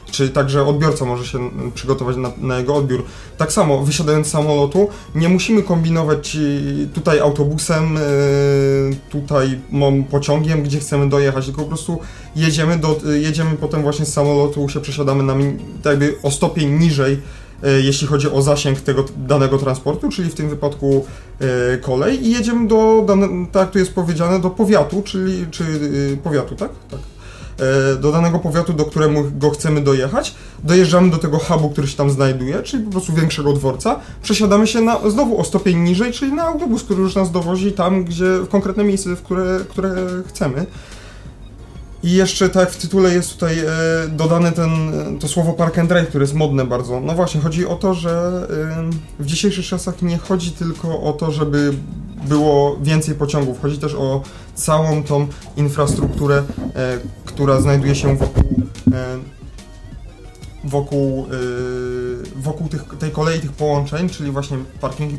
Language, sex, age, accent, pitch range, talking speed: Polish, male, 30-49, native, 140-170 Hz, 155 wpm